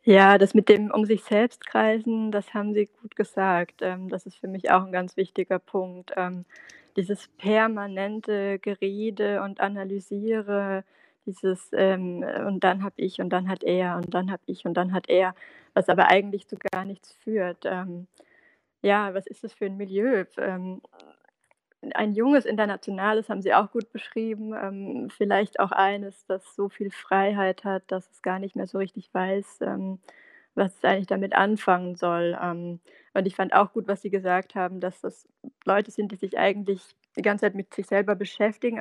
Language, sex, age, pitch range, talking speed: German, female, 20-39, 185-210 Hz, 175 wpm